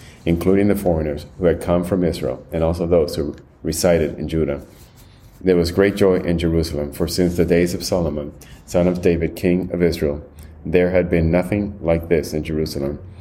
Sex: male